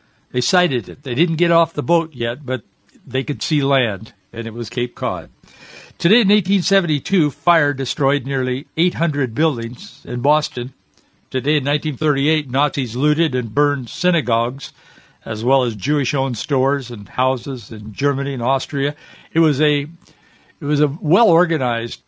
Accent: American